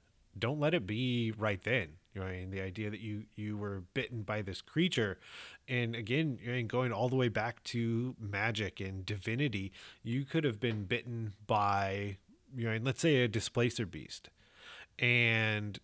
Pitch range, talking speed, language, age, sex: 100-120 Hz, 170 wpm, English, 30-49, male